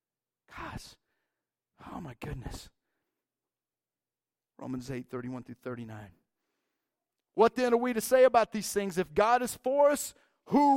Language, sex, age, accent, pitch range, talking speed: English, male, 40-59, American, 195-255 Hz, 135 wpm